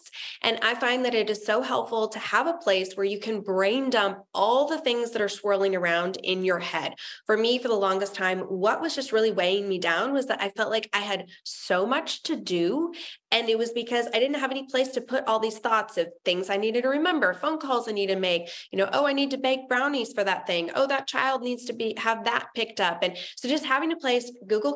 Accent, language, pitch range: American, English, 195-265 Hz